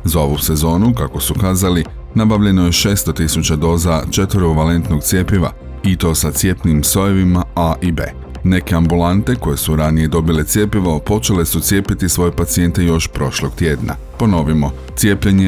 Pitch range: 80-95 Hz